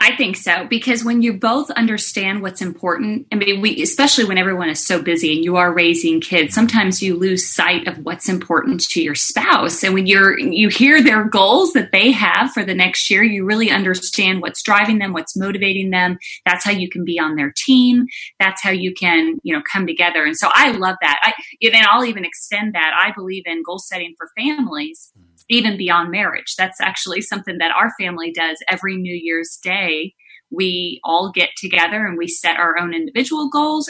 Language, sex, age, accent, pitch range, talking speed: English, female, 30-49, American, 170-230 Hz, 205 wpm